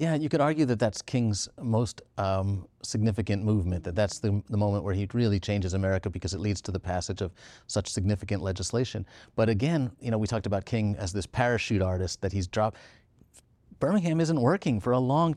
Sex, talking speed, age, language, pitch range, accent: male, 205 wpm, 30-49, English, 100-125 Hz, American